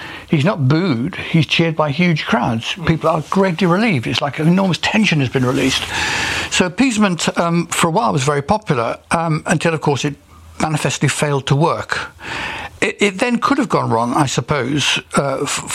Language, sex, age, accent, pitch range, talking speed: English, male, 60-79, British, 135-170 Hz, 185 wpm